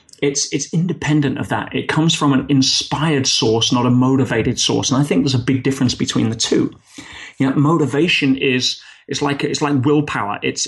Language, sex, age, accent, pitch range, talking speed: English, male, 30-49, British, 130-150 Hz, 195 wpm